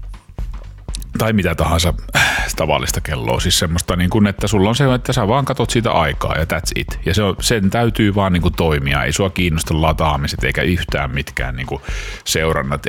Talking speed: 155 wpm